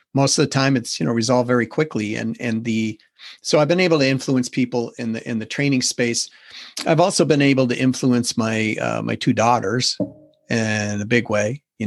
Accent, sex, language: American, male, English